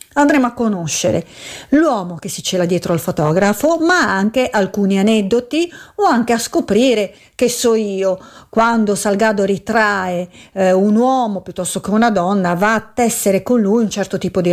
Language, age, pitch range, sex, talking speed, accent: Italian, 40-59, 185-235 Hz, female, 165 wpm, native